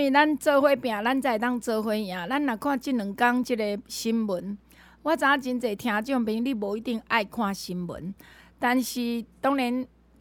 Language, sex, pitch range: Chinese, female, 205-290 Hz